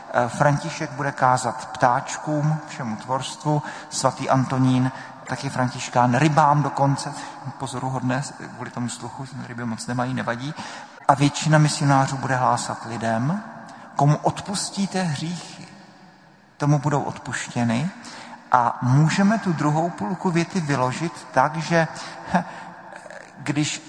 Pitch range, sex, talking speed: 125-155 Hz, male, 110 wpm